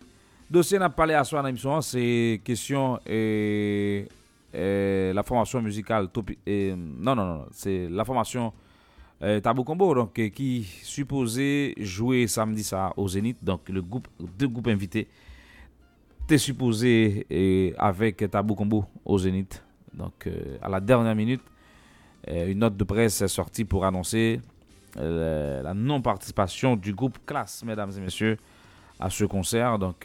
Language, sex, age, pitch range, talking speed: English, male, 40-59, 95-120 Hz, 130 wpm